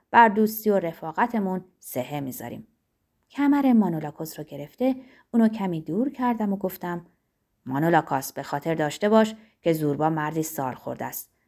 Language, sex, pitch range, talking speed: Persian, female, 145-220 Hz, 140 wpm